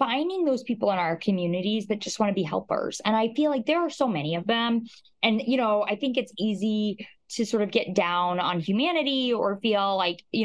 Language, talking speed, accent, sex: English, 230 wpm, American, female